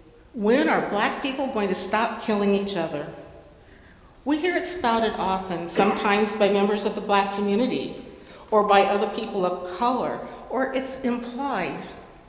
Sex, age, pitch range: female, 50-69, 185-230 Hz